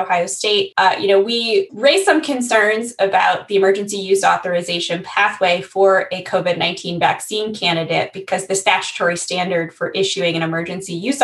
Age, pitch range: 20-39, 180-215 Hz